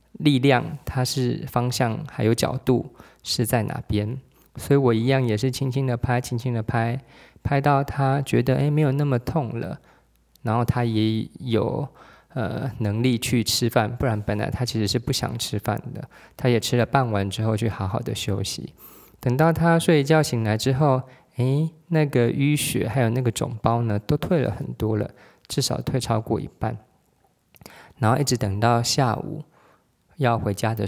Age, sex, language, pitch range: 20-39, male, Chinese, 110-135 Hz